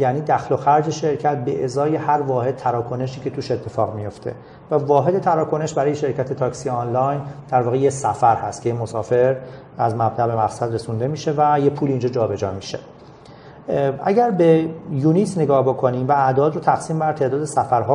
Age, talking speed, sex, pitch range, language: 40-59, 175 wpm, male, 120-150 Hz, Persian